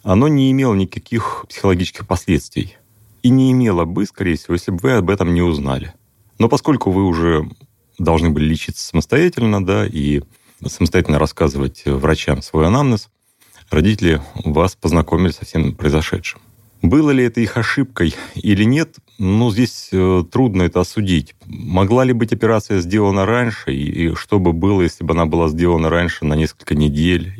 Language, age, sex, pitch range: Russian, 30-49, male, 80-110 Hz